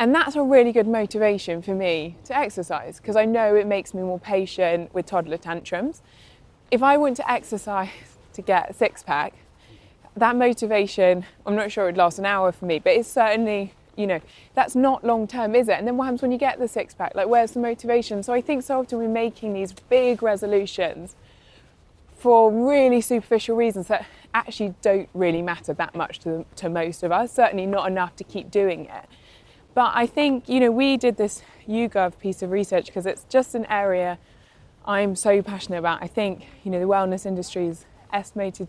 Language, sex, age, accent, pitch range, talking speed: English, female, 20-39, British, 185-235 Hz, 205 wpm